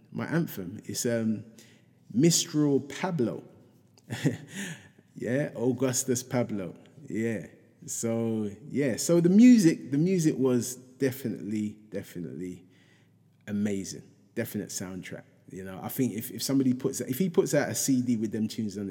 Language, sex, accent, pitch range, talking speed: English, male, British, 110-140 Hz, 130 wpm